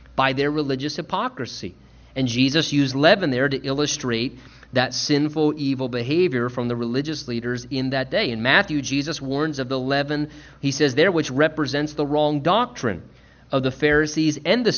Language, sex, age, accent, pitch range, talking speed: English, male, 40-59, American, 135-190 Hz, 170 wpm